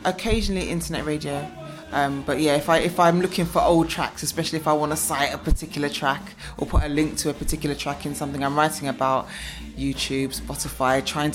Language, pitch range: English, 135-155 Hz